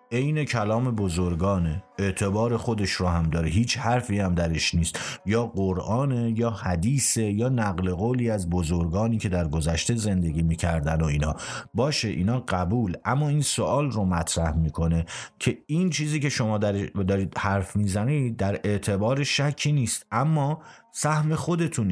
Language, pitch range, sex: Persian, 85-120 Hz, male